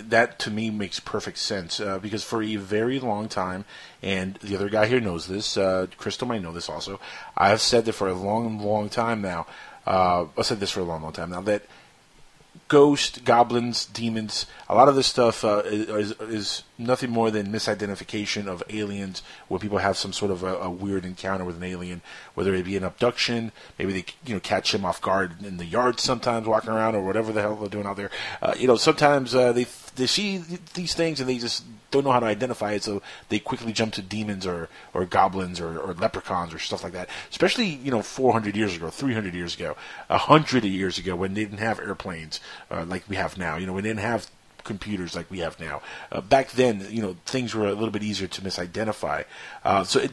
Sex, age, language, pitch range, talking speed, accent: male, 30-49, English, 95-115 Hz, 225 wpm, American